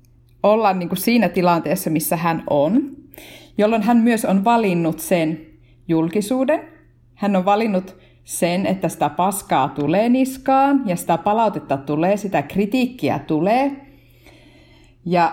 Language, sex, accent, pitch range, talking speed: Finnish, female, native, 160-210 Hz, 125 wpm